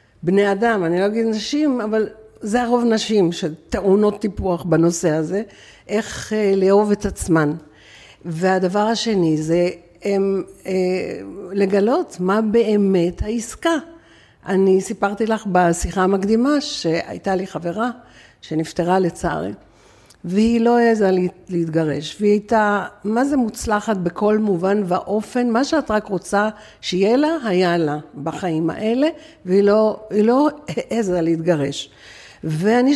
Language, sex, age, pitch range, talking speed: Hebrew, female, 60-79, 185-230 Hz, 120 wpm